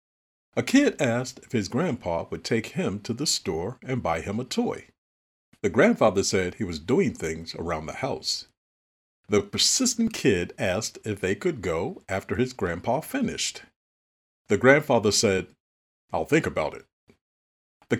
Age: 50-69